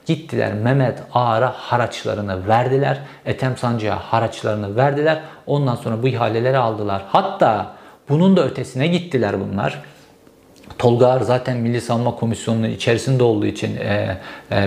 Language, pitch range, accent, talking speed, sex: Turkish, 120-155 Hz, native, 125 wpm, male